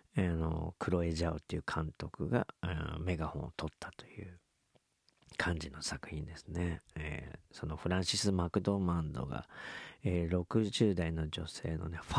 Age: 40-59